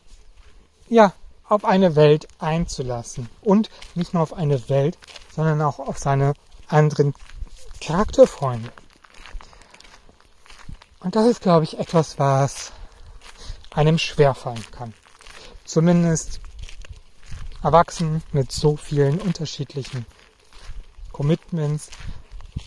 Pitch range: 130-165 Hz